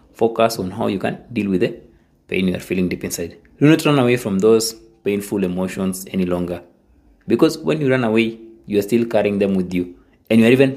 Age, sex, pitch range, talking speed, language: 20-39, male, 95-120 Hz, 225 wpm, English